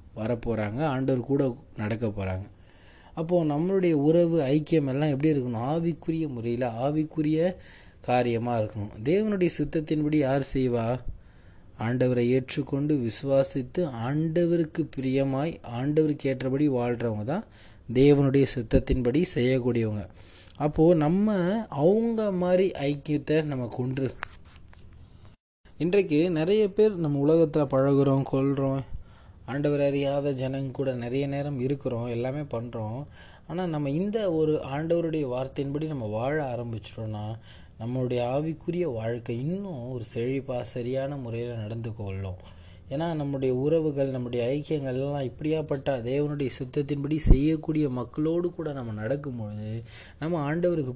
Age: 20-39